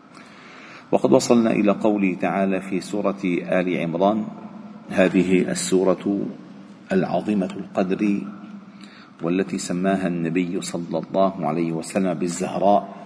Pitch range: 100-135 Hz